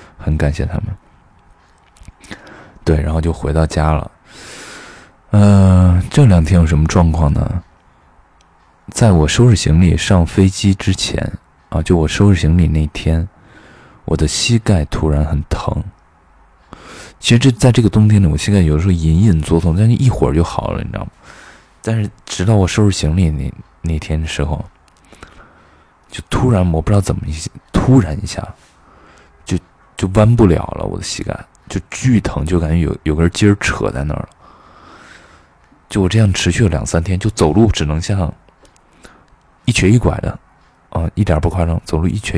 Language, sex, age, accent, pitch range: Chinese, male, 20-39, native, 80-100 Hz